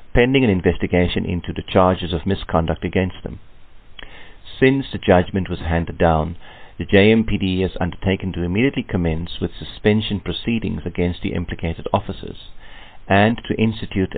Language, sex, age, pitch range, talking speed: English, male, 50-69, 85-105 Hz, 140 wpm